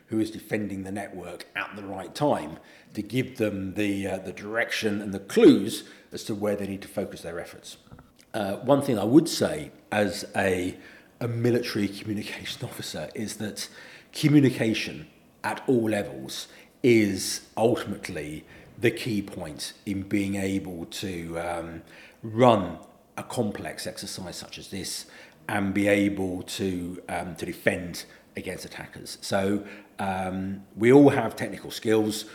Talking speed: 145 wpm